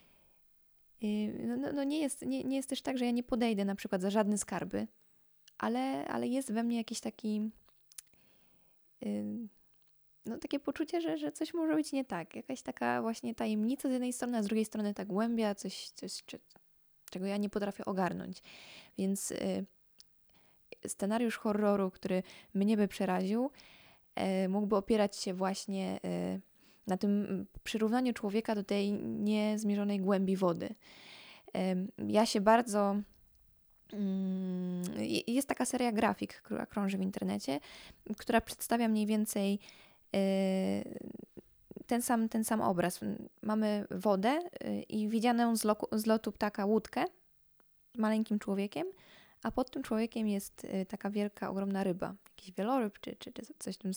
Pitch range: 195-230 Hz